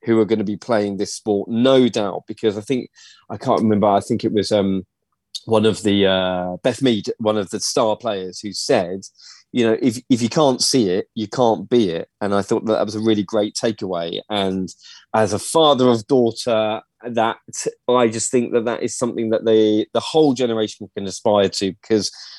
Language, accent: English, British